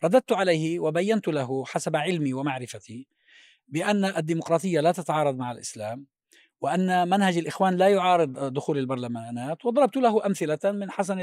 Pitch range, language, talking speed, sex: 140-190 Hz, Arabic, 135 wpm, male